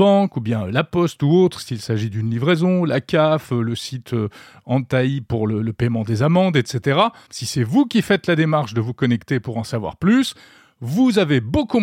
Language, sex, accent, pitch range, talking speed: French, male, French, 120-170 Hz, 200 wpm